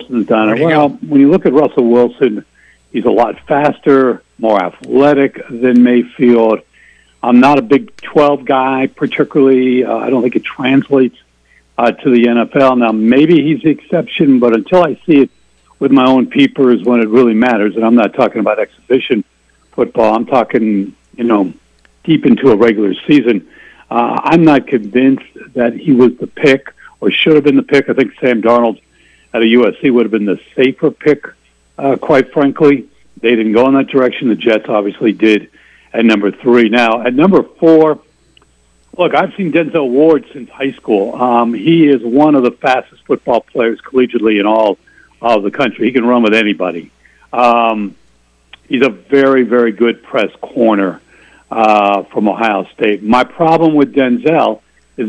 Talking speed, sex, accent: 175 wpm, male, American